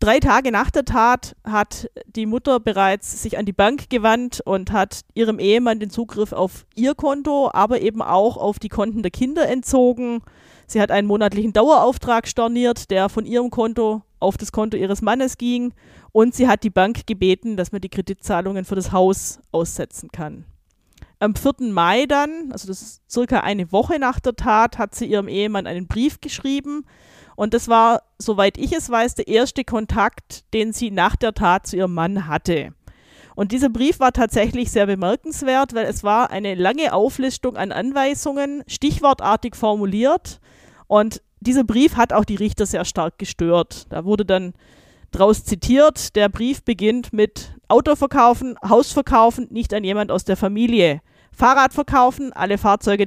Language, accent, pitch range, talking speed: German, German, 200-250 Hz, 170 wpm